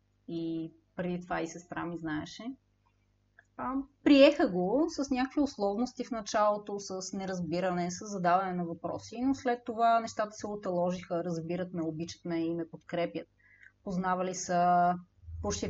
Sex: female